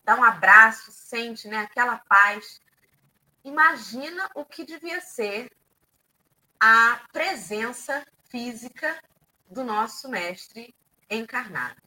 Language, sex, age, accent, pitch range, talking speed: Portuguese, female, 20-39, Brazilian, 205-260 Hz, 95 wpm